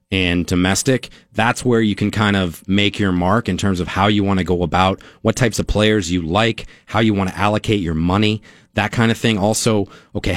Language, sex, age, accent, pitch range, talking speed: English, male, 30-49, American, 95-110 Hz, 225 wpm